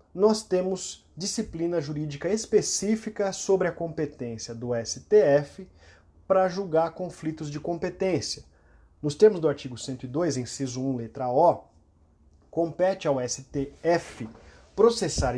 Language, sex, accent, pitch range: Portuguese, male, Brazilian, 130-200 Hz